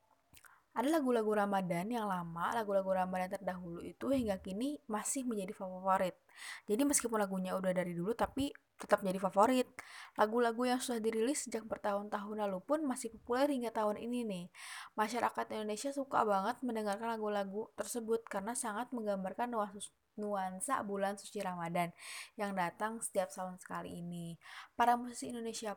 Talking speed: 140 wpm